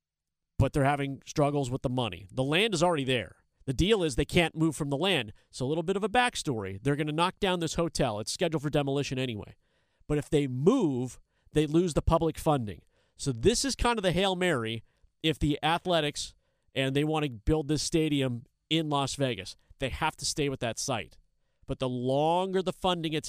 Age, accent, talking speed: 40-59, American, 215 wpm